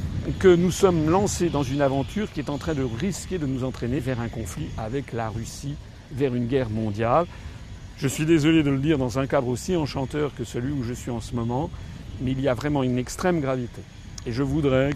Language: French